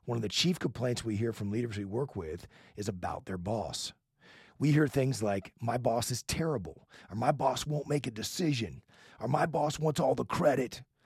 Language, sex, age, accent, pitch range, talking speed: English, male, 40-59, American, 100-140 Hz, 205 wpm